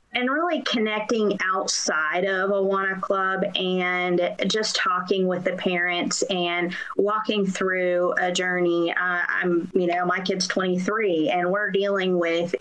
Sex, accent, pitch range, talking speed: female, American, 175-200 Hz, 145 wpm